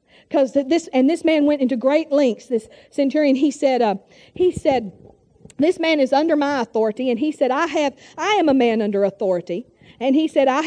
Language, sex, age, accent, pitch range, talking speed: English, female, 50-69, American, 225-300 Hz, 210 wpm